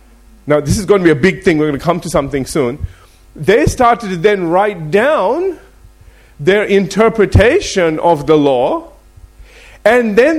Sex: male